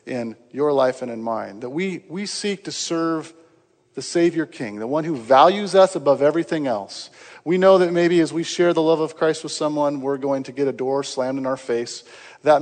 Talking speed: 225 wpm